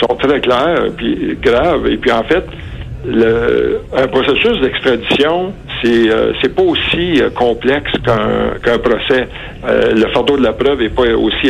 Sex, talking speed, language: male, 165 wpm, French